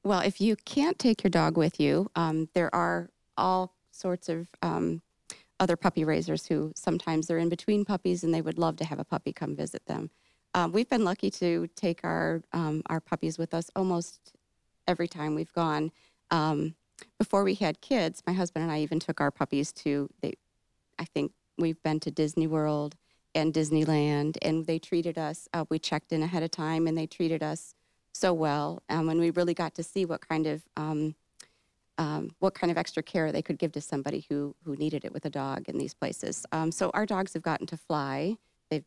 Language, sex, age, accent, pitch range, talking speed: English, female, 40-59, American, 150-175 Hz, 210 wpm